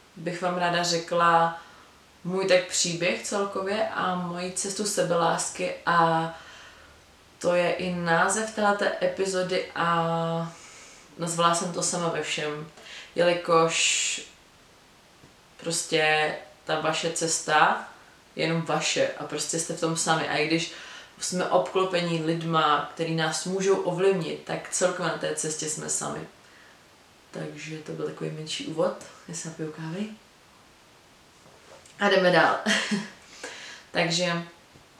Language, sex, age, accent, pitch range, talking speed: Czech, female, 20-39, native, 160-180 Hz, 120 wpm